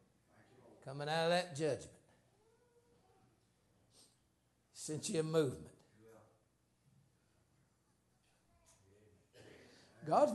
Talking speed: 60 wpm